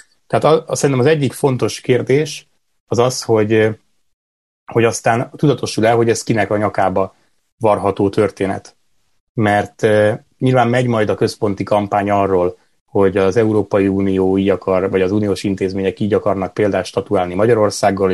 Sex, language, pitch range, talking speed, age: male, Hungarian, 95-115 Hz, 145 wpm, 30-49